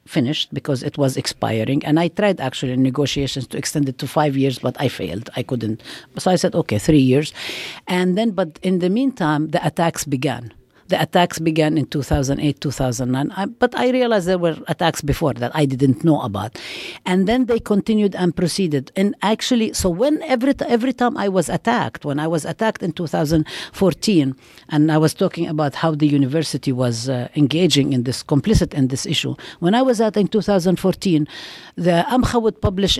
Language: English